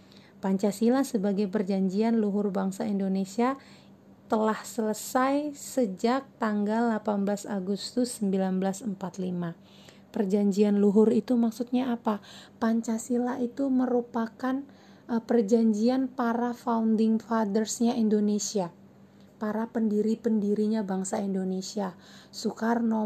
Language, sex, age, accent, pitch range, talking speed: Indonesian, female, 30-49, native, 205-240 Hz, 80 wpm